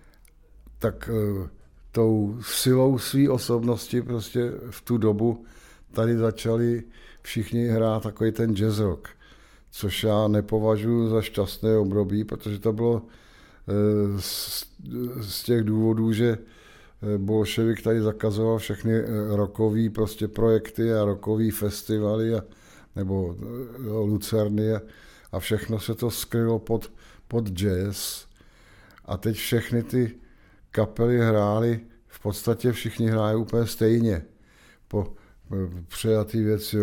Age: 50-69